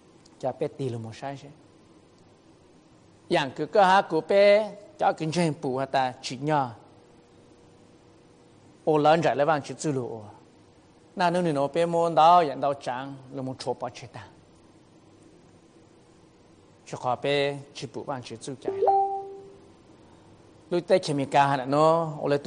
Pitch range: 140-185 Hz